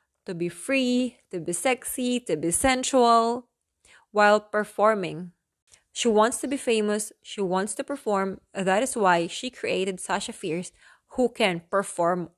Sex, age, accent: female, 20-39, Filipino